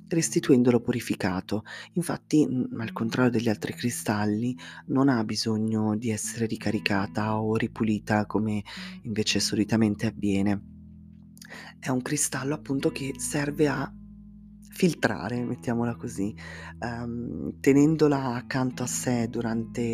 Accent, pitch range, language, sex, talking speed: native, 105-125 Hz, Italian, female, 105 wpm